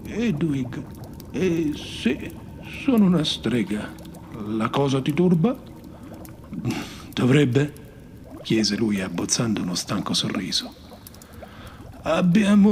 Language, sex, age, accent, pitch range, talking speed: Italian, male, 50-69, native, 115-170 Hz, 85 wpm